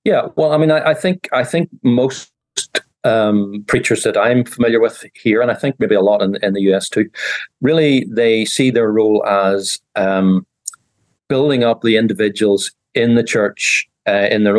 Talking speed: 185 wpm